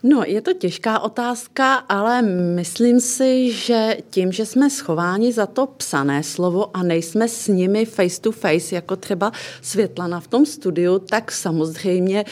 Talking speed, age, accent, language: 150 wpm, 40-59, native, Czech